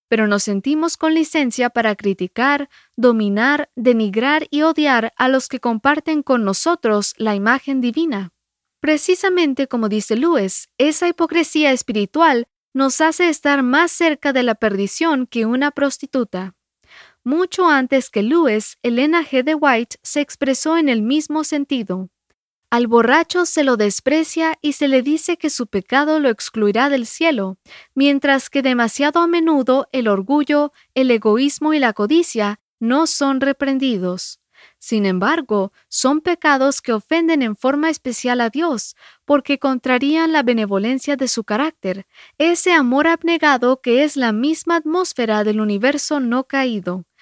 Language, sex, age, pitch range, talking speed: English, female, 20-39, 235-305 Hz, 145 wpm